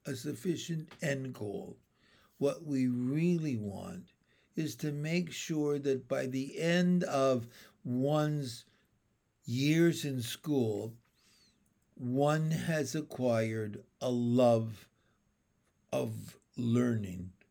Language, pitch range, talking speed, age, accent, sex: English, 130-185 Hz, 95 wpm, 60-79, American, male